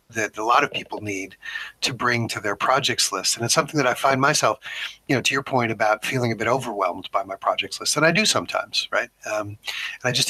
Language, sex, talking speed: English, male, 245 wpm